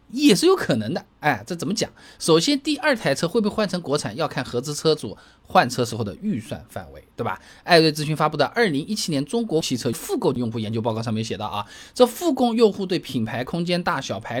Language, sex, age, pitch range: Chinese, male, 20-39, 120-190 Hz